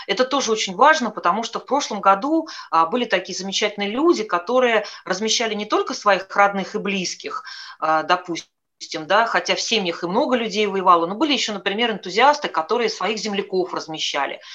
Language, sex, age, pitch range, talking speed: Russian, female, 30-49, 180-225 Hz, 155 wpm